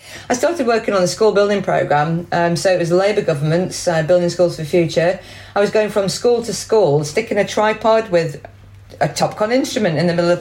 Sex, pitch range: female, 145-205 Hz